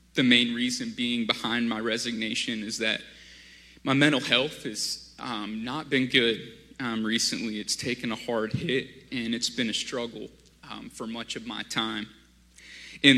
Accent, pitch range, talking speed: American, 115-135 Hz, 160 wpm